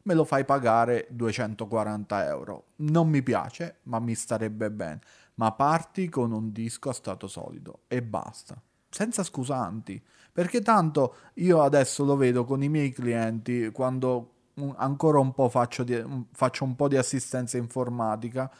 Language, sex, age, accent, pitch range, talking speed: Italian, male, 30-49, native, 120-140 Hz, 150 wpm